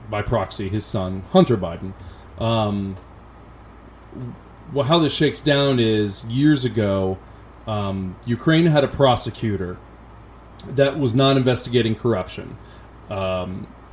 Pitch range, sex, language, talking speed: 100-130 Hz, male, English, 110 wpm